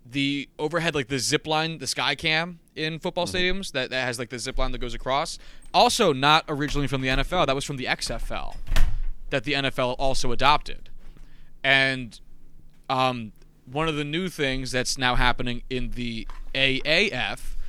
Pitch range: 120-145 Hz